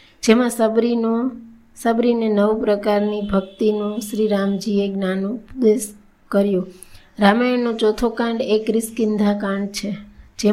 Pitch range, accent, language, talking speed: 205-225 Hz, native, Gujarati, 105 wpm